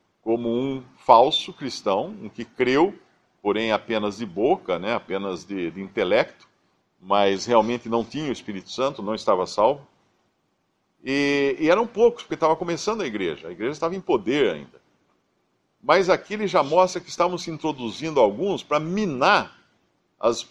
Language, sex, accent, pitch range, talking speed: Portuguese, male, Brazilian, 115-170 Hz, 160 wpm